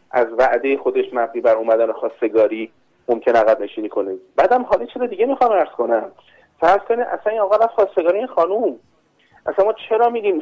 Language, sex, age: Persian, male, 30-49